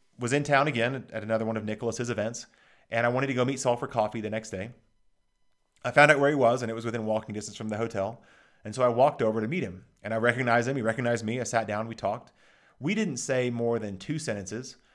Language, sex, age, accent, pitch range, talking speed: English, male, 30-49, American, 110-135 Hz, 255 wpm